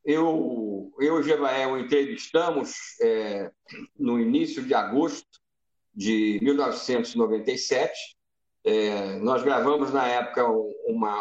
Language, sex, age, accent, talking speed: Portuguese, male, 50-69, Brazilian, 105 wpm